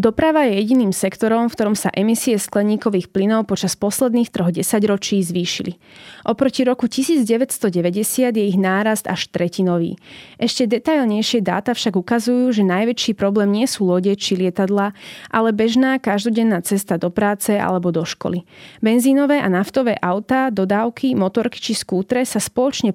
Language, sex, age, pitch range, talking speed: Slovak, female, 20-39, 190-235 Hz, 145 wpm